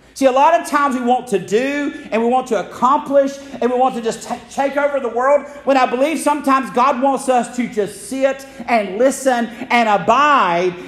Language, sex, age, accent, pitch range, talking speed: English, male, 50-69, American, 210-265 Hz, 205 wpm